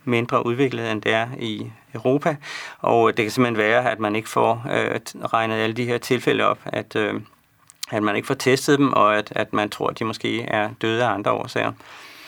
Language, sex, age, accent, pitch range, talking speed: Danish, male, 40-59, native, 110-135 Hz, 215 wpm